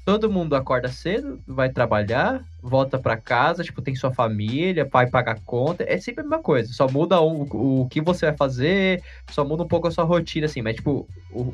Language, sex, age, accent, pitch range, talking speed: Portuguese, male, 10-29, Brazilian, 110-145 Hz, 215 wpm